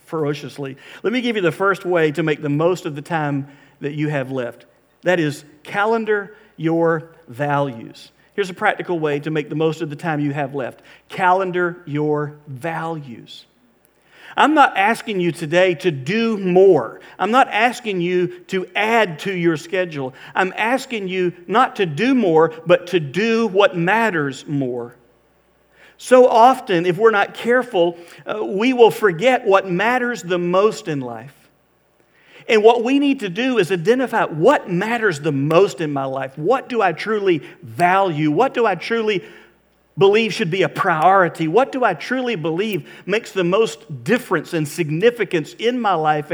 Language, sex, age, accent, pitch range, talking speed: English, male, 50-69, American, 155-215 Hz, 170 wpm